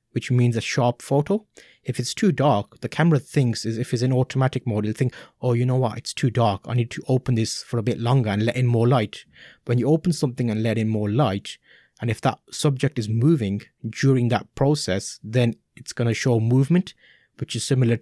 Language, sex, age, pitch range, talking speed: English, male, 20-39, 115-140 Hz, 225 wpm